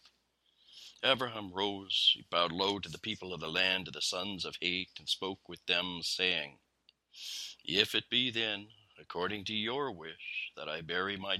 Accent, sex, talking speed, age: American, male, 175 wpm, 60-79